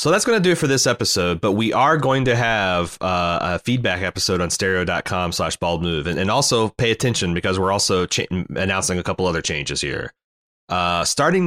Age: 30-49